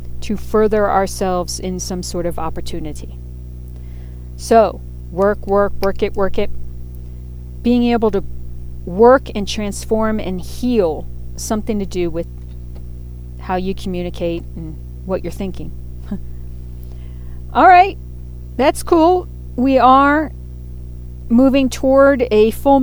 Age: 40-59